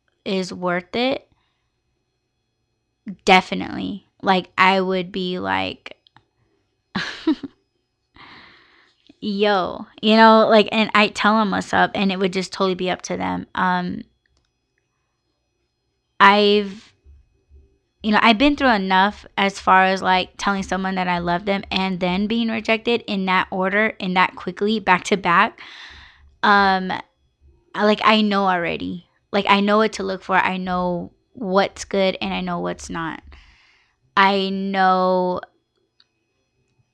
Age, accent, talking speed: 10-29, American, 135 wpm